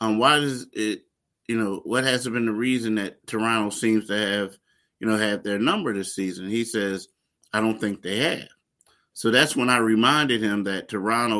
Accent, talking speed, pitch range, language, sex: American, 205 wpm, 100-120 Hz, English, male